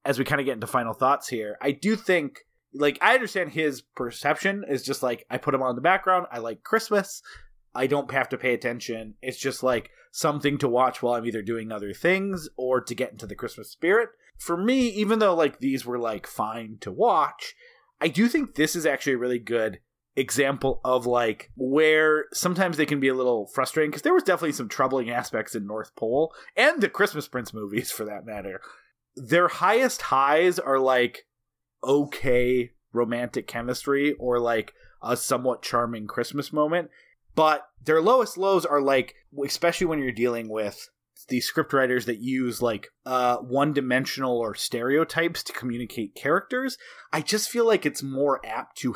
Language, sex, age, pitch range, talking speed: English, male, 30-49, 120-170 Hz, 185 wpm